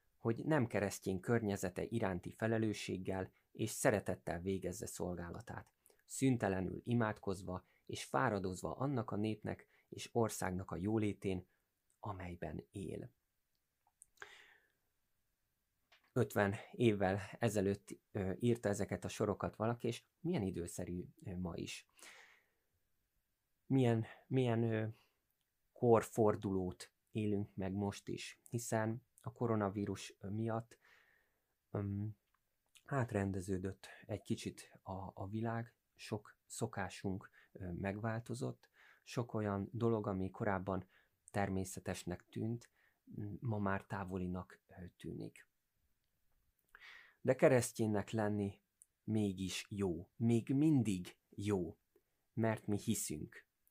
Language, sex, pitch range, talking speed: Hungarian, male, 95-115 Hz, 90 wpm